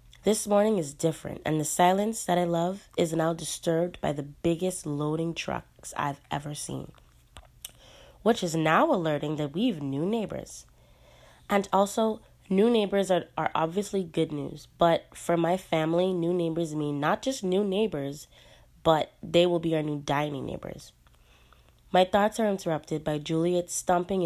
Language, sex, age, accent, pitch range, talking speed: English, female, 20-39, American, 145-185 Hz, 160 wpm